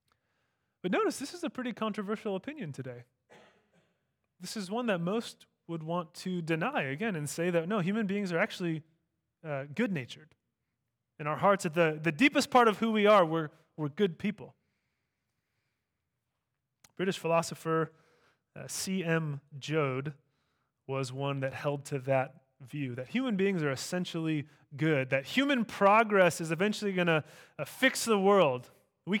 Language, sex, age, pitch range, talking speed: English, male, 20-39, 140-200 Hz, 155 wpm